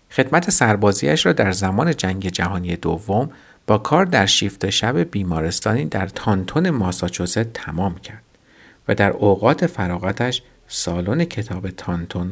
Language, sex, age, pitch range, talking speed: Persian, male, 50-69, 95-130 Hz, 125 wpm